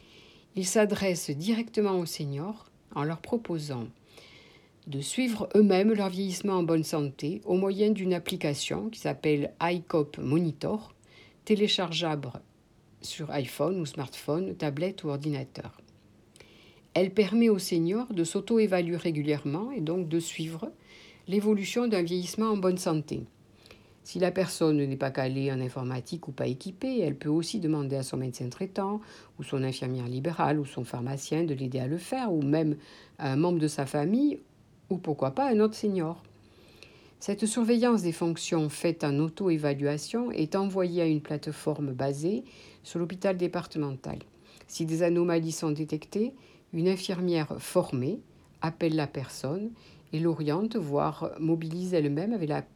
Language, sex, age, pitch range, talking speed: French, female, 60-79, 145-190 Hz, 145 wpm